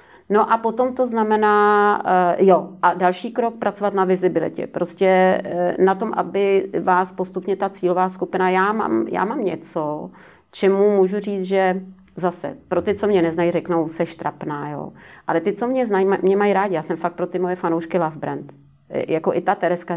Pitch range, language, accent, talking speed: 170-190 Hz, Czech, native, 185 wpm